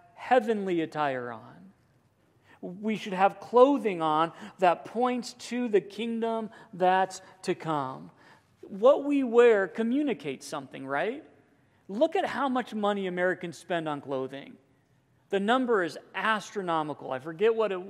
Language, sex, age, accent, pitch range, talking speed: English, male, 40-59, American, 165-240 Hz, 130 wpm